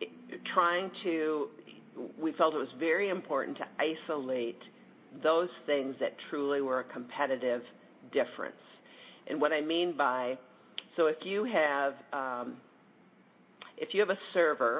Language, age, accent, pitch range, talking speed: English, 50-69, American, 135-175 Hz, 140 wpm